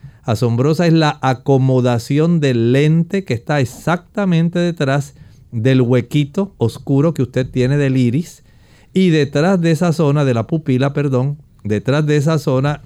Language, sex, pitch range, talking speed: English, male, 125-160 Hz, 145 wpm